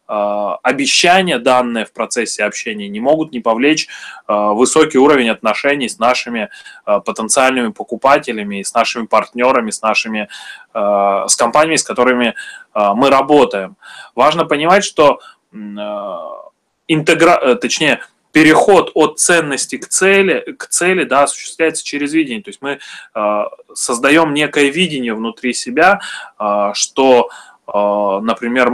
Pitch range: 115-155 Hz